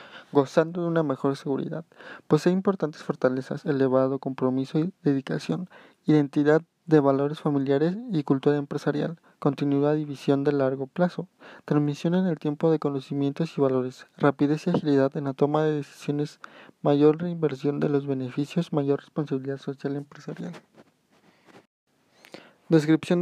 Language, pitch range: Spanish, 140-165 Hz